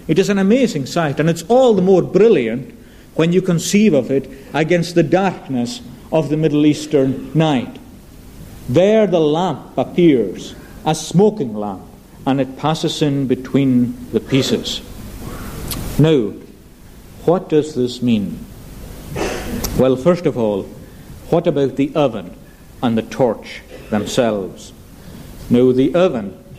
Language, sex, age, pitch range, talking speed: English, male, 60-79, 125-165 Hz, 130 wpm